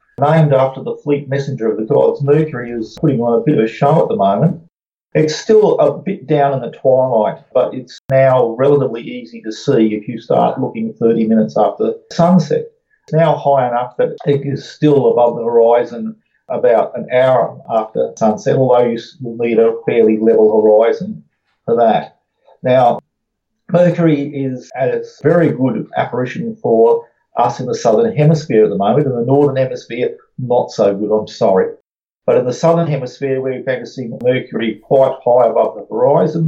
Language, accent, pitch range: English, Australian, 120-160 Hz